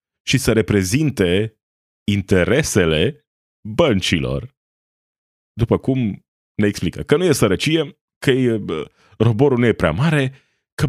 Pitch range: 95-130 Hz